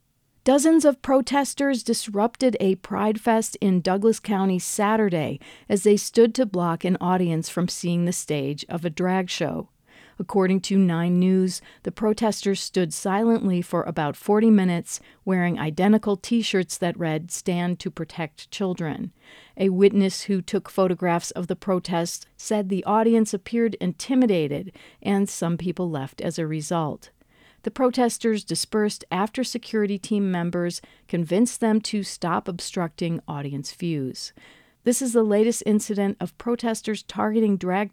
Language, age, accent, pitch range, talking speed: English, 50-69, American, 170-215 Hz, 140 wpm